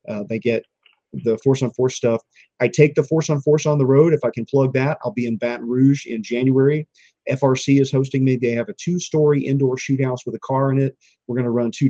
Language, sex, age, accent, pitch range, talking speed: English, male, 40-59, American, 115-135 Hz, 250 wpm